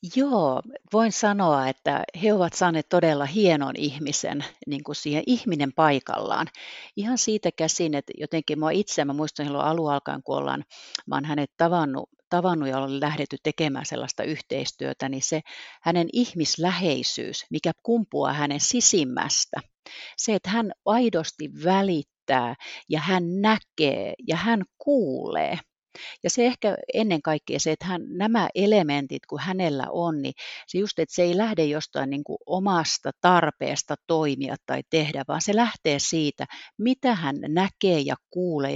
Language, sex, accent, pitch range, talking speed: Finnish, female, native, 145-200 Hz, 150 wpm